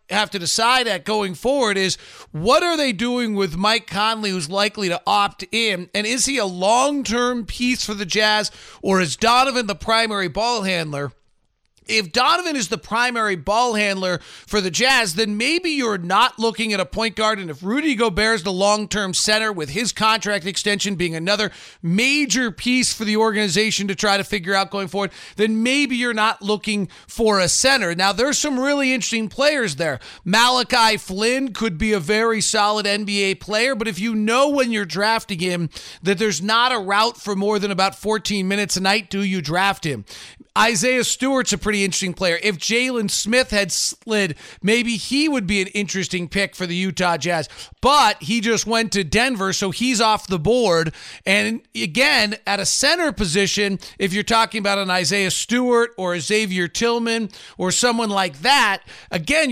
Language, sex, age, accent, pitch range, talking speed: English, male, 40-59, American, 195-235 Hz, 185 wpm